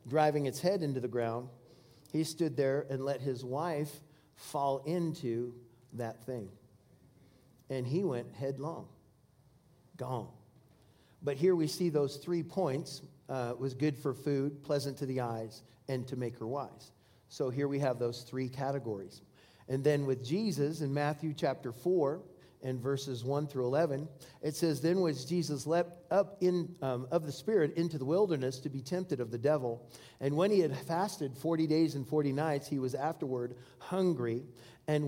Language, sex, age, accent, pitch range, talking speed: English, male, 40-59, American, 130-160 Hz, 170 wpm